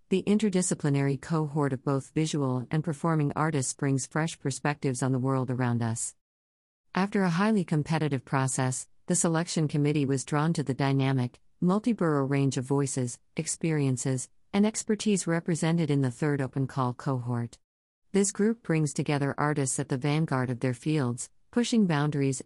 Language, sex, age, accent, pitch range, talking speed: English, female, 50-69, American, 130-160 Hz, 155 wpm